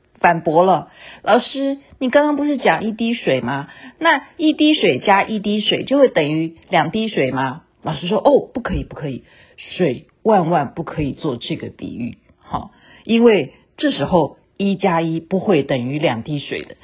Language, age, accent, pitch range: Chinese, 50-69, native, 145-210 Hz